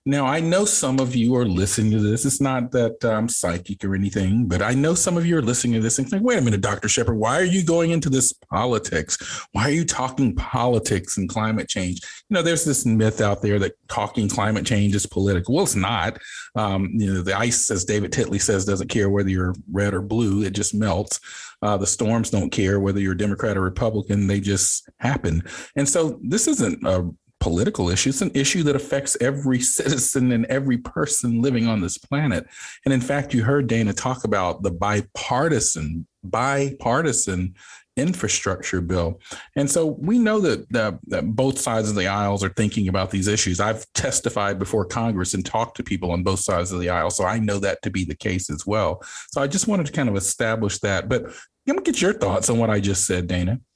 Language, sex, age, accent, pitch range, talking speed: English, male, 40-59, American, 100-130 Hz, 215 wpm